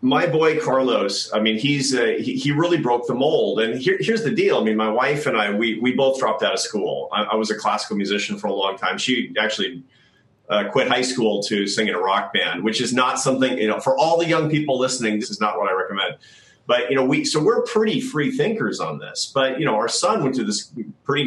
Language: English